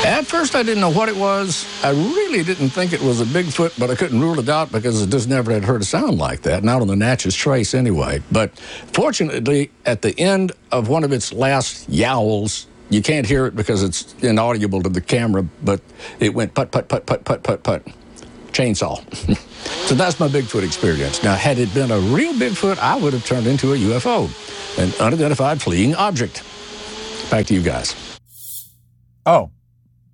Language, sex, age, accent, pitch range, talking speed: English, male, 60-79, American, 115-160 Hz, 195 wpm